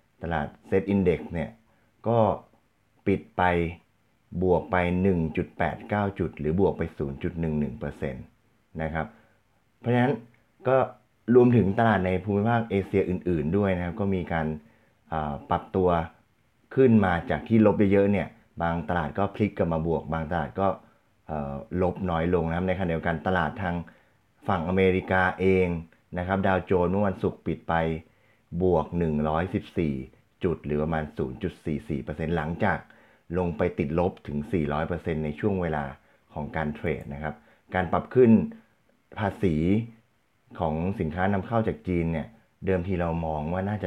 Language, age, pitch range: Thai, 30-49, 80-105 Hz